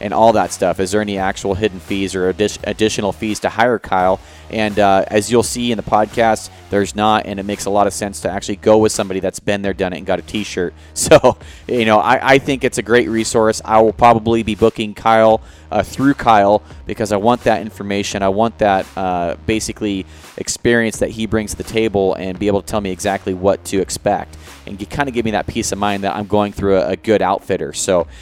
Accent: American